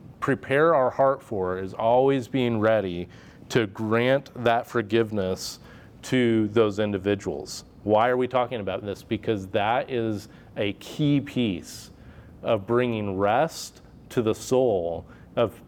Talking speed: 130 wpm